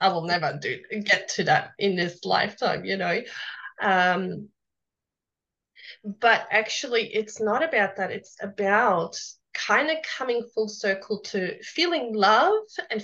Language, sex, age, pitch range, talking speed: English, female, 20-39, 190-230 Hz, 140 wpm